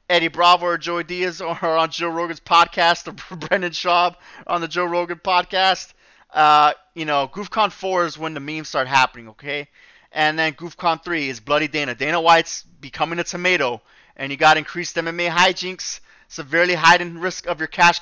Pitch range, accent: 160-180 Hz, American